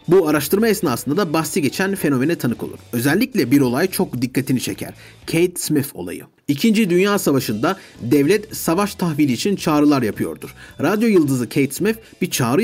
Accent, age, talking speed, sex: native, 40-59, 155 wpm, male